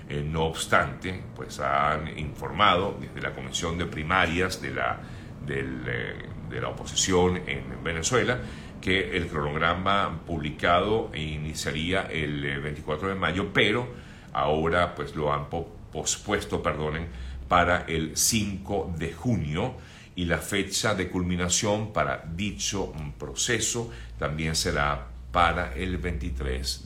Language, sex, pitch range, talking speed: Spanish, male, 75-95 Hz, 115 wpm